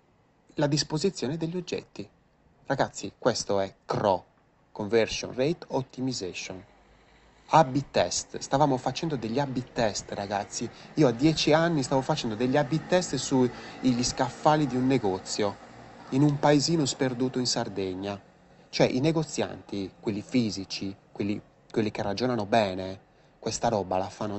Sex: male